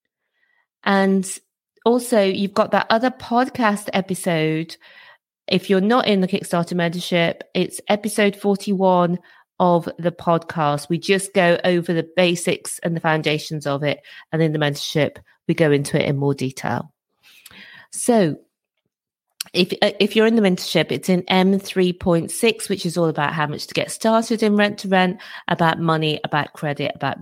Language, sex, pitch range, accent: English, female, 155-195 Hz, British